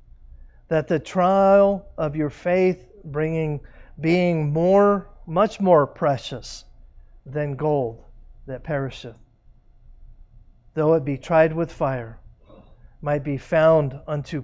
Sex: male